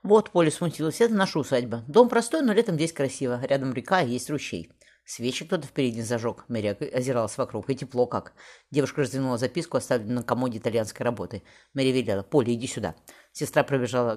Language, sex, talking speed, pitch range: Russian, female, 175 wpm, 115-145 Hz